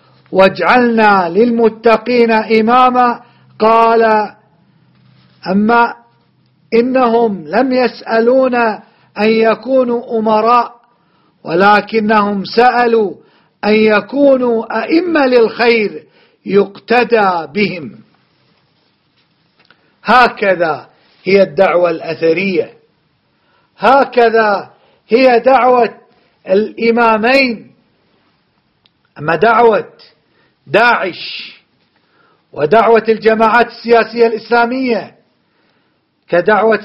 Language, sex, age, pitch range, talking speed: Arabic, male, 50-69, 210-245 Hz, 55 wpm